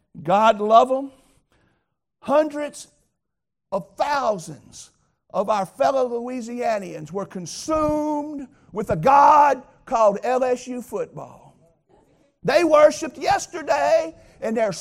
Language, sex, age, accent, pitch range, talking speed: English, male, 50-69, American, 220-300 Hz, 95 wpm